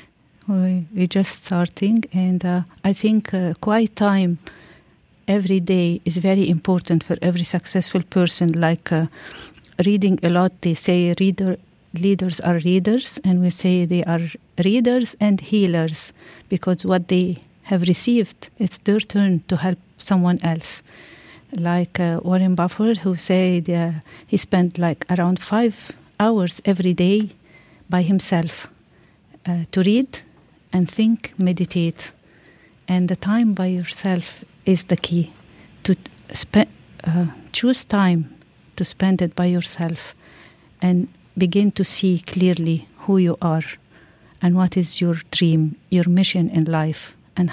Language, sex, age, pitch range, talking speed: English, female, 50-69, 175-195 Hz, 135 wpm